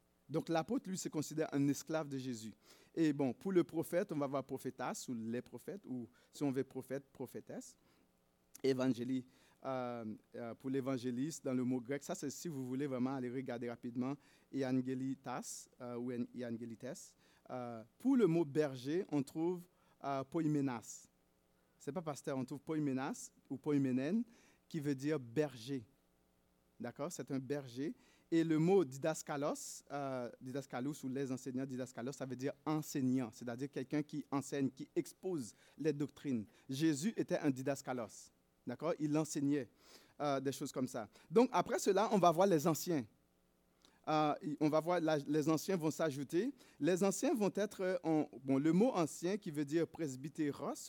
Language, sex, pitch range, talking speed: French, male, 130-165 Hz, 165 wpm